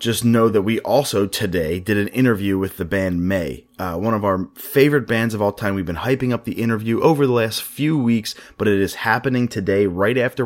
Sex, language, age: male, English, 30-49